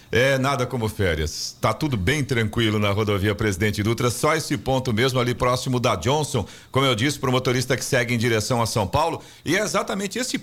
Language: Portuguese